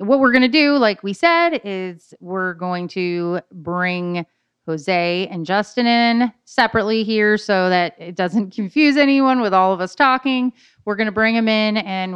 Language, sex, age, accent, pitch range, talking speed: English, female, 30-49, American, 180-235 Hz, 185 wpm